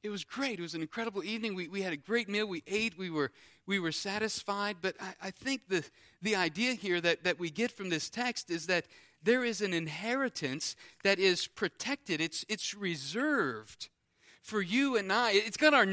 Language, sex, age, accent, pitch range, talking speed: English, male, 40-59, American, 165-245 Hz, 205 wpm